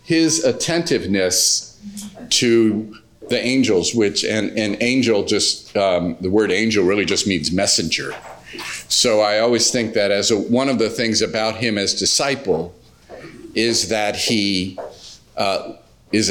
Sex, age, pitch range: male, 50-69, 95-120 Hz